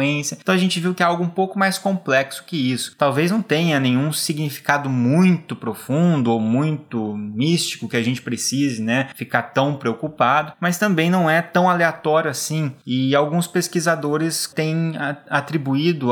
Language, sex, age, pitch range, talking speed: Portuguese, male, 20-39, 130-165 Hz, 160 wpm